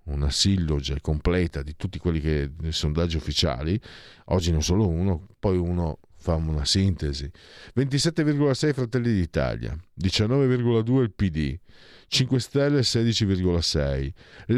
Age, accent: 50-69, native